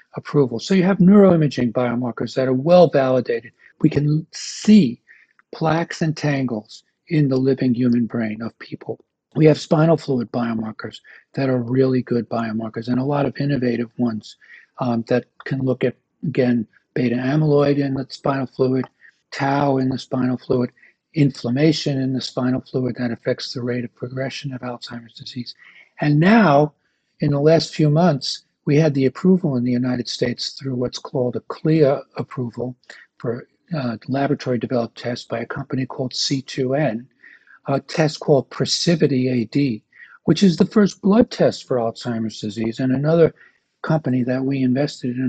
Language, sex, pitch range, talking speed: English, male, 125-155 Hz, 160 wpm